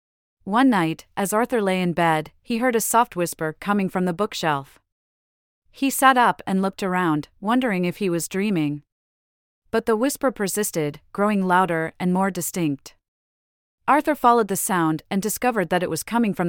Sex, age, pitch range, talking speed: female, 30-49, 160-220 Hz, 170 wpm